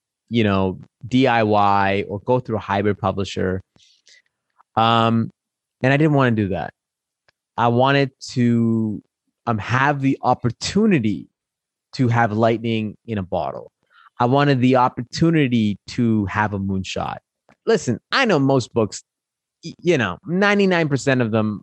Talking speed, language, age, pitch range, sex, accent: 135 wpm, English, 30-49, 110-145 Hz, male, American